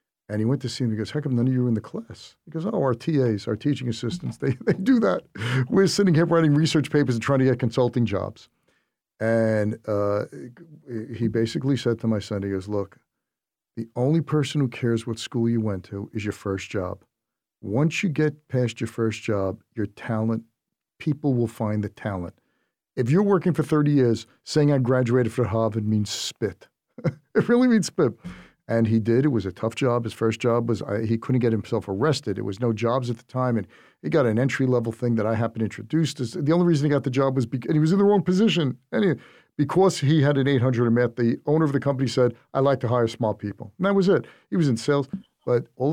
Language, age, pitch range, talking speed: English, 50-69, 110-145 Hz, 235 wpm